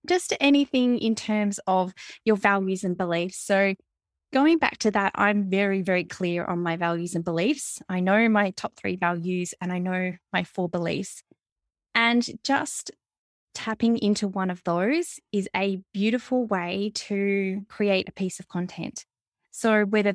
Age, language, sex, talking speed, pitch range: 10-29, English, female, 160 wpm, 185-230 Hz